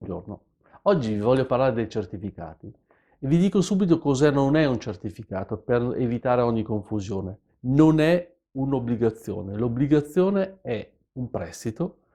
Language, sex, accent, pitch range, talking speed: Italian, male, native, 105-150 Hz, 130 wpm